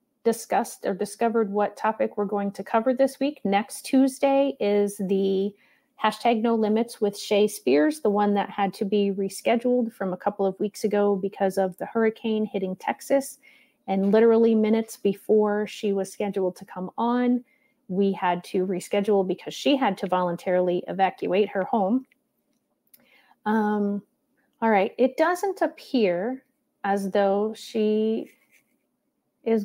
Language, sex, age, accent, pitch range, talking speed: English, female, 40-59, American, 195-240 Hz, 145 wpm